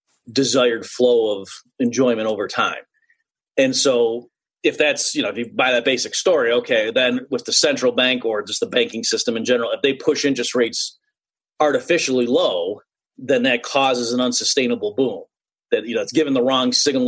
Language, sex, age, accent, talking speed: English, male, 30-49, American, 185 wpm